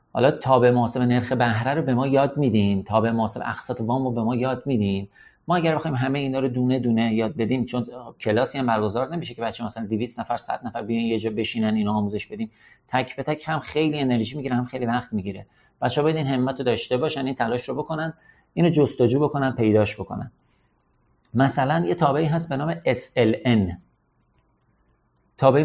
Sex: male